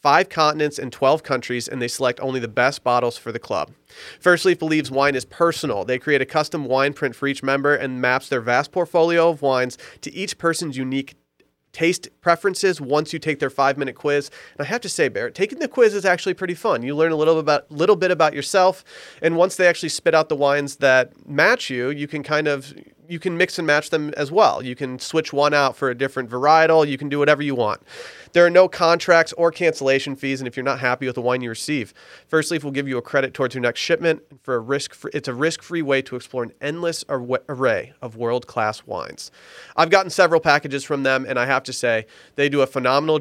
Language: English